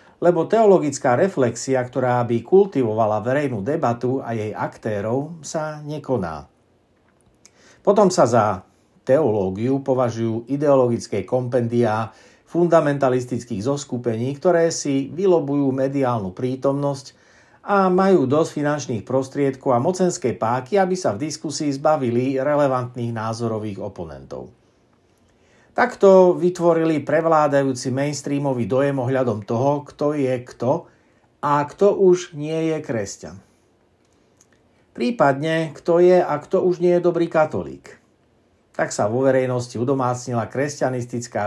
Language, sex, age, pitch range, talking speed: Slovak, male, 60-79, 120-150 Hz, 110 wpm